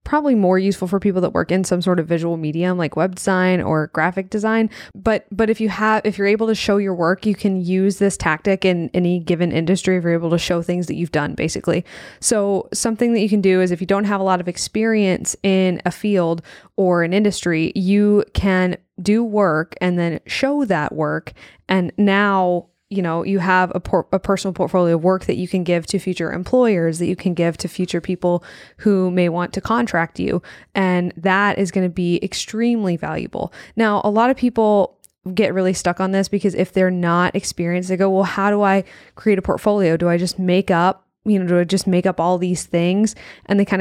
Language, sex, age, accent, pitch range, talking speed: English, female, 20-39, American, 175-200 Hz, 220 wpm